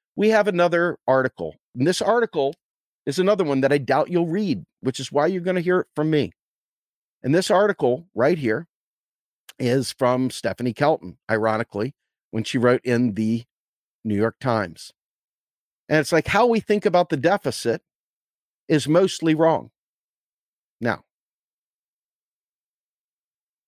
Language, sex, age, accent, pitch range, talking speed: English, male, 50-69, American, 125-180 Hz, 145 wpm